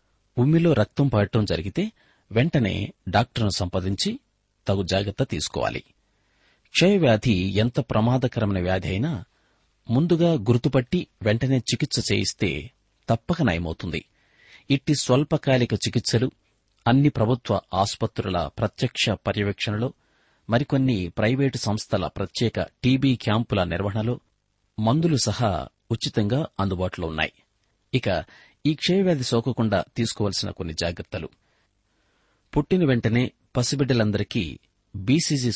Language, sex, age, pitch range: Telugu, male, 30-49, 100-130 Hz